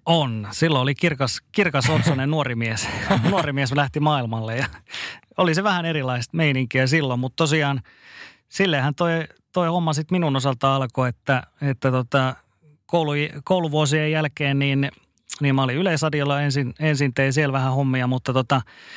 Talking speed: 150 wpm